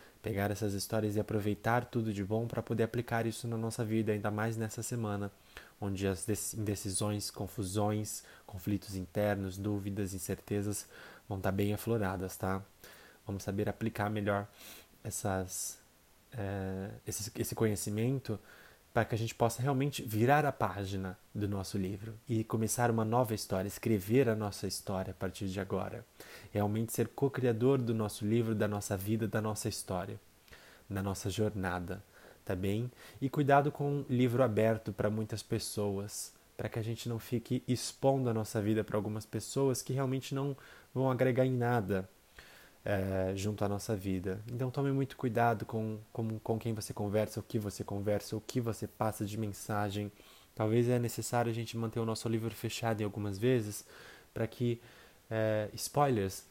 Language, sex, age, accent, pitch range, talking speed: Portuguese, male, 20-39, Brazilian, 100-115 Hz, 160 wpm